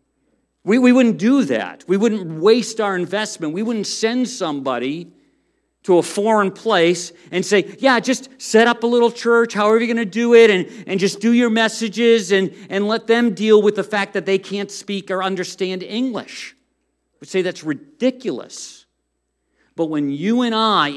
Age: 50-69